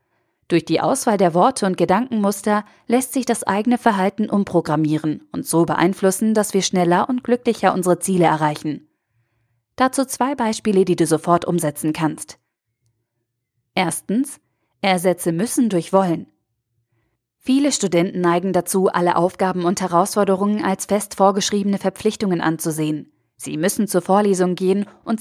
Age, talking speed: 20-39, 135 wpm